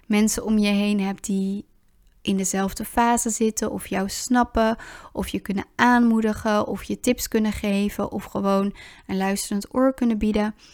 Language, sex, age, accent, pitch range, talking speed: Dutch, female, 20-39, Dutch, 200-225 Hz, 160 wpm